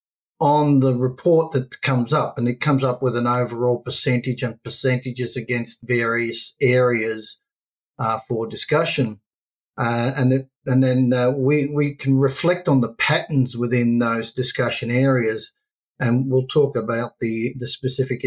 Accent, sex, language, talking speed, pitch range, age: Australian, male, English, 150 wpm, 120-140 Hz, 50-69